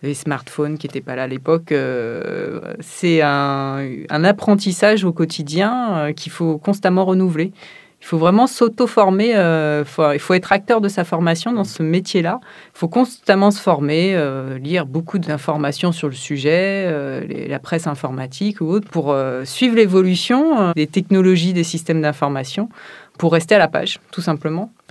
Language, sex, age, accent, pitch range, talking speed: French, female, 30-49, French, 150-200 Hz, 175 wpm